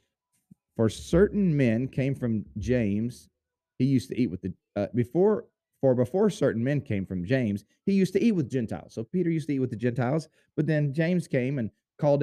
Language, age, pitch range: English, 30-49, 105-145 Hz